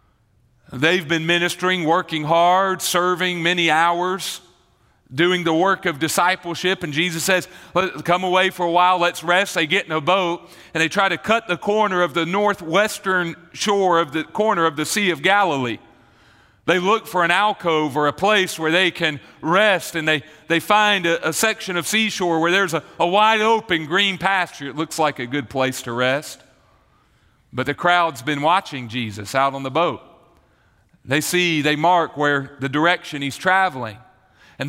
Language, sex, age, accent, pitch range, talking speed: English, male, 40-59, American, 155-195 Hz, 180 wpm